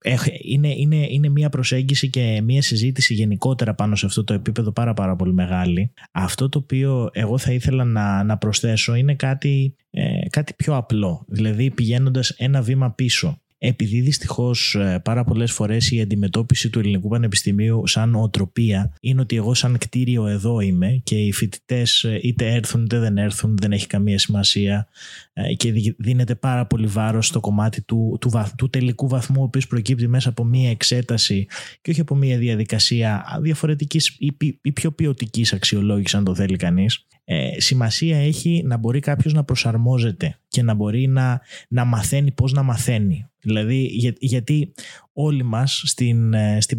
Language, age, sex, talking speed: Greek, 20-39, male, 160 wpm